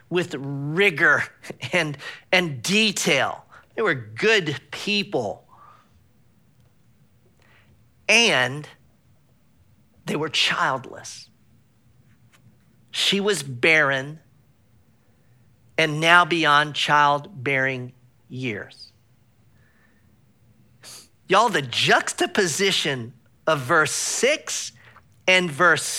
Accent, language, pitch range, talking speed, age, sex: American, English, 125-180 Hz, 65 wpm, 40-59, male